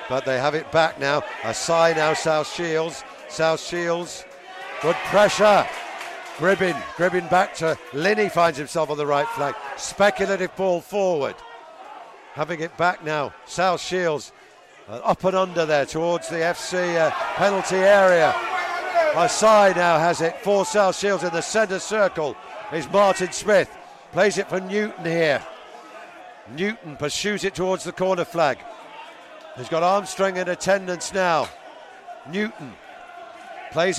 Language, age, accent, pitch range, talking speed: English, 50-69, British, 170-230 Hz, 140 wpm